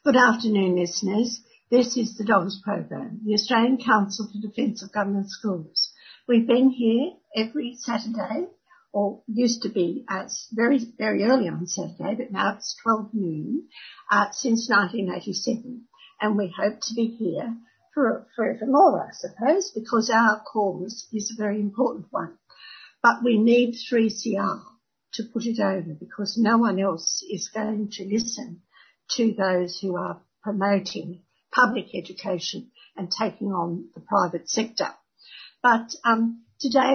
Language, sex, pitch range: English, female, 200-240 Hz